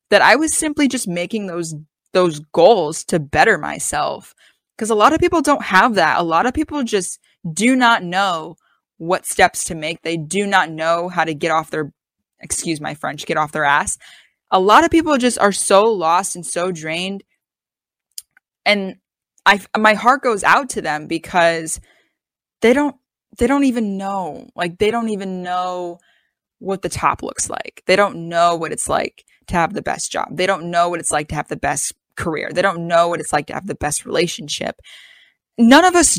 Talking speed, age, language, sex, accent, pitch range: 200 wpm, 20-39, English, female, American, 170-230 Hz